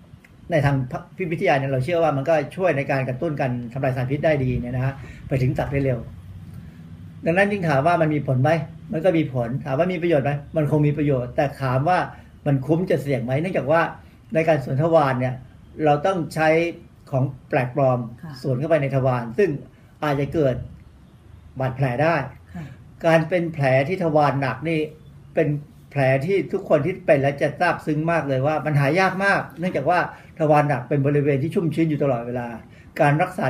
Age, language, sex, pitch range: 60-79, Thai, male, 130-165 Hz